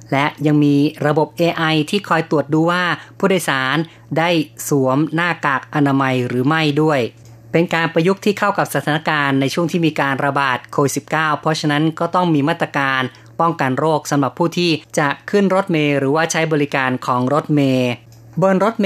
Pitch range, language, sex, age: 135-165 Hz, Thai, female, 20-39